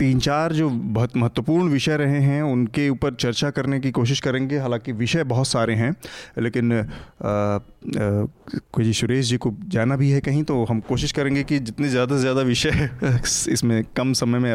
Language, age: Hindi, 30-49